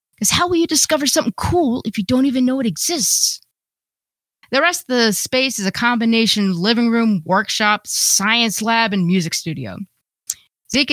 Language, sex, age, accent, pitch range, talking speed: English, female, 30-49, American, 190-245 Hz, 175 wpm